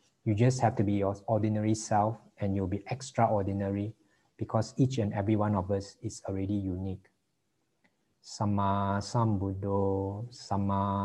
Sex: male